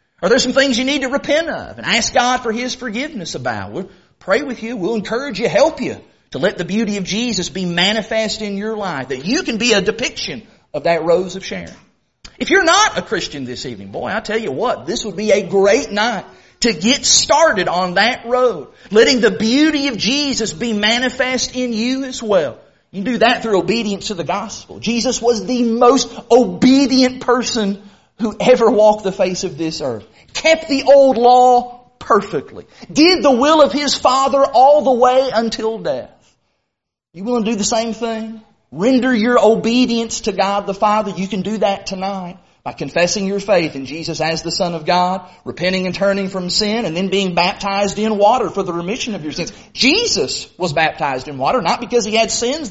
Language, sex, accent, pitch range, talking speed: English, male, American, 195-250 Hz, 200 wpm